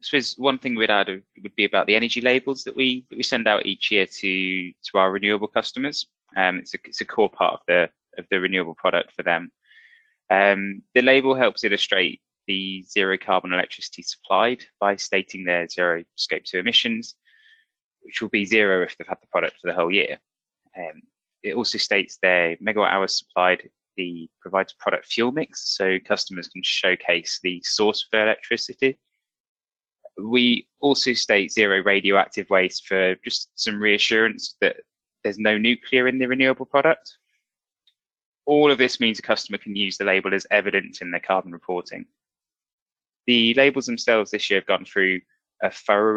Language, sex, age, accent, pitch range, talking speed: English, male, 20-39, British, 95-130 Hz, 175 wpm